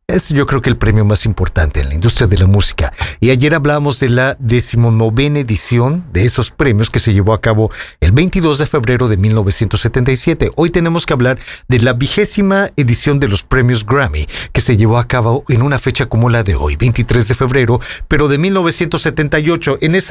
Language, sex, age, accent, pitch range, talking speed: English, male, 40-59, Mexican, 115-145 Hz, 195 wpm